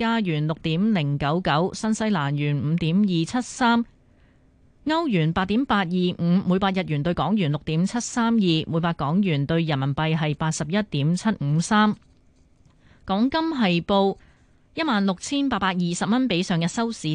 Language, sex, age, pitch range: Chinese, female, 20-39, 160-215 Hz